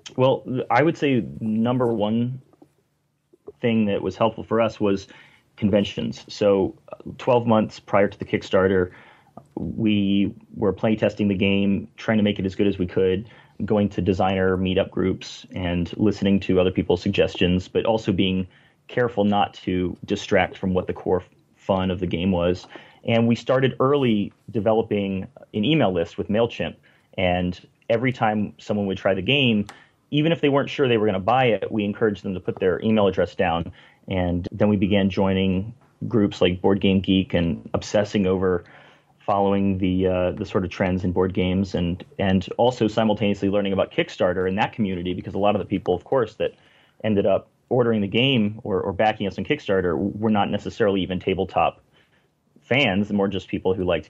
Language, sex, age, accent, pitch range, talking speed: English, male, 30-49, American, 95-110 Hz, 180 wpm